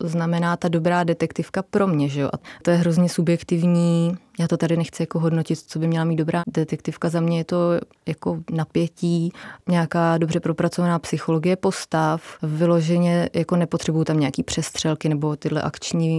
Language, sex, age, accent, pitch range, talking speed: Czech, female, 20-39, native, 155-170 Hz, 165 wpm